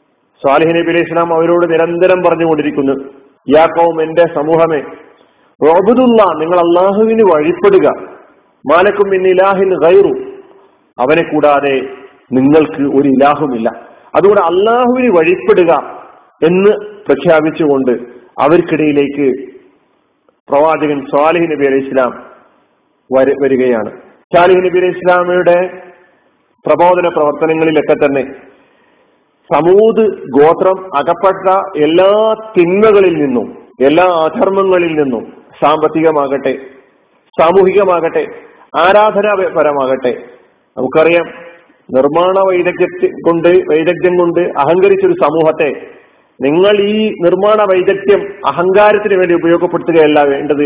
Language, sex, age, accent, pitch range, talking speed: Malayalam, male, 40-59, native, 145-190 Hz, 80 wpm